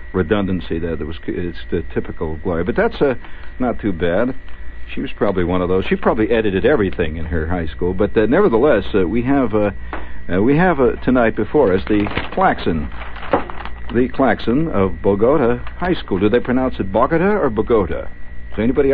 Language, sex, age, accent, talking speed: English, male, 60-79, American, 195 wpm